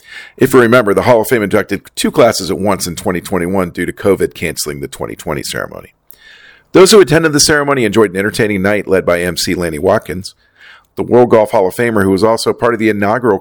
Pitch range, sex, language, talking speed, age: 95-145 Hz, male, English, 215 wpm, 40-59